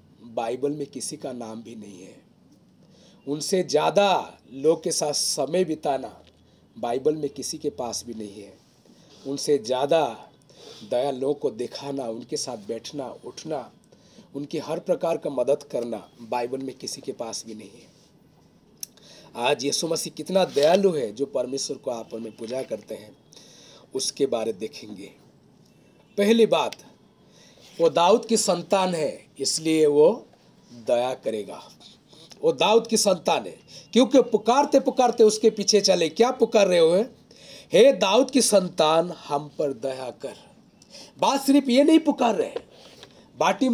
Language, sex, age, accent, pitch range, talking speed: Hindi, male, 40-59, native, 140-225 Hz, 145 wpm